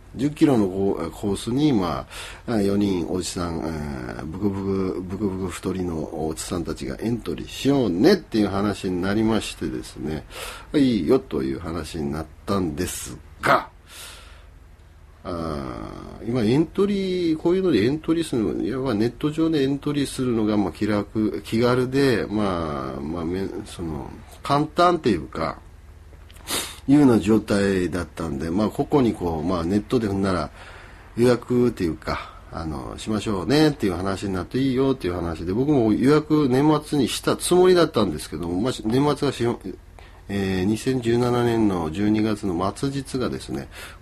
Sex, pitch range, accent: male, 85-125 Hz, native